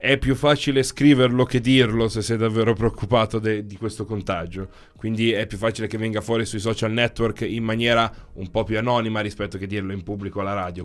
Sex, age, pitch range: male, 20-39, 105-130 Hz